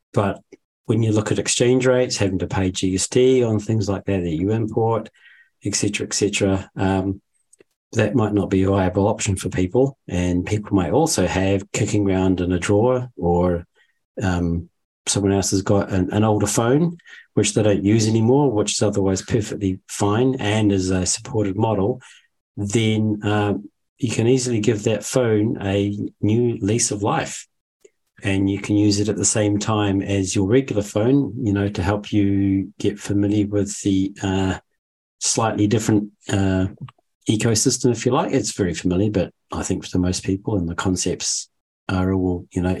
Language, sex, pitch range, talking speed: English, male, 95-110 Hz, 180 wpm